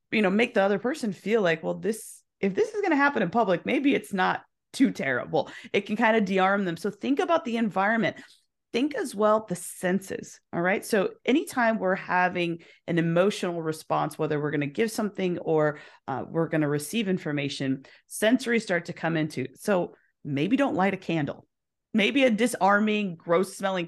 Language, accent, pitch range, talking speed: English, American, 165-220 Hz, 195 wpm